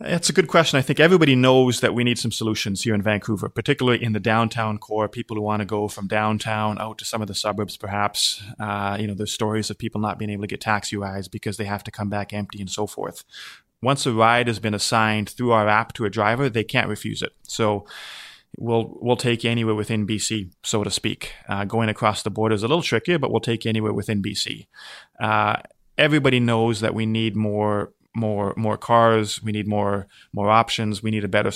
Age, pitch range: 20-39, 105-120 Hz